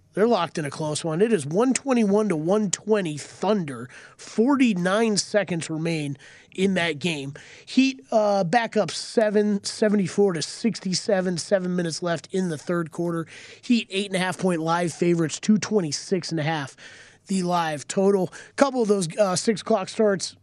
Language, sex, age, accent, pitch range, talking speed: English, male, 30-49, American, 155-205 Hz, 140 wpm